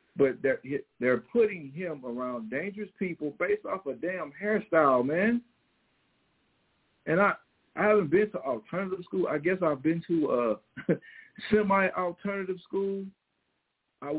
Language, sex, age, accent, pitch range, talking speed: English, male, 50-69, American, 135-205 Hz, 135 wpm